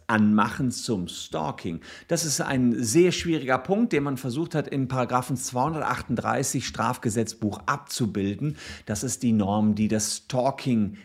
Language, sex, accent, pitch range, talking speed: German, male, German, 115-150 Hz, 130 wpm